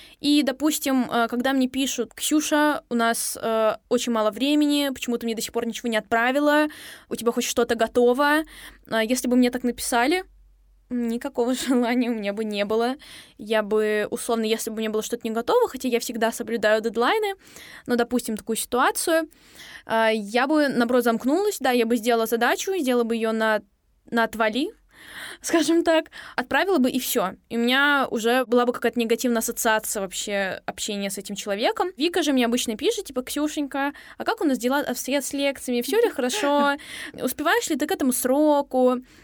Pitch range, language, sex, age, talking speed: 230-290 Hz, Russian, female, 10-29, 185 wpm